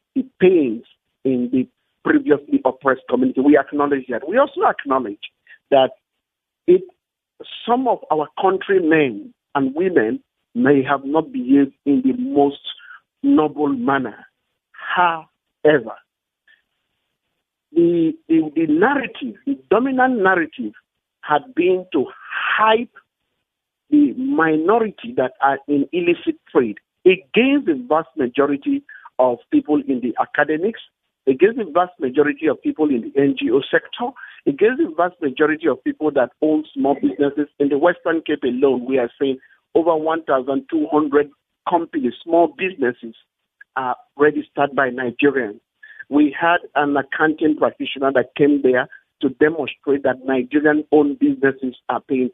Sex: male